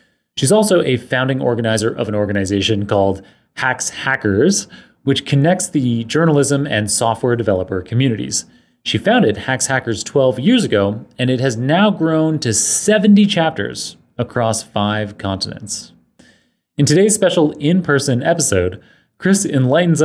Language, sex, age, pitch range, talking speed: English, male, 30-49, 110-155 Hz, 130 wpm